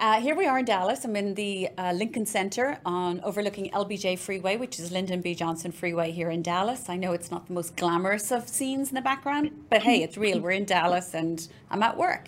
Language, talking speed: English, 235 wpm